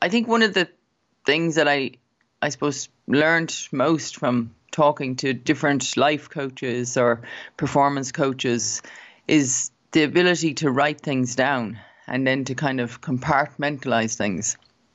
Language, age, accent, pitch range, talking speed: English, 30-49, Irish, 125-145 Hz, 140 wpm